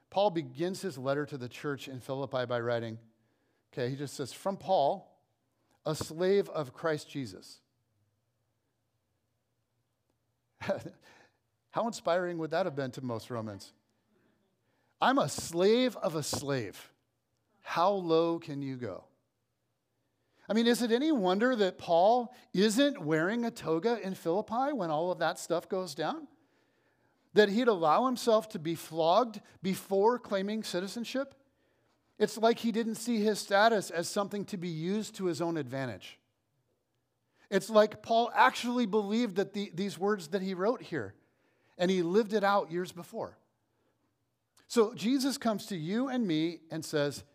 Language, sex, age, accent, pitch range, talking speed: English, male, 50-69, American, 135-215 Hz, 150 wpm